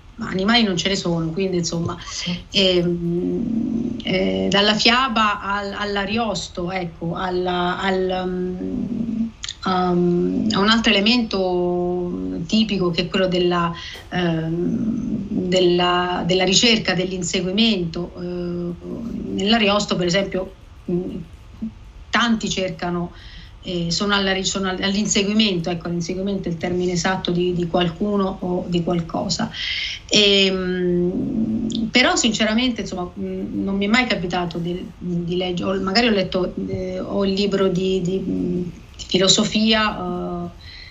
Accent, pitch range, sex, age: native, 180-205 Hz, female, 30-49